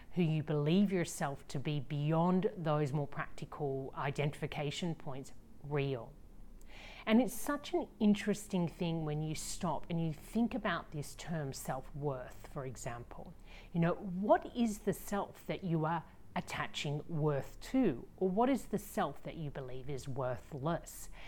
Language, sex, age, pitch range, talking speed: English, female, 40-59, 140-185 Hz, 150 wpm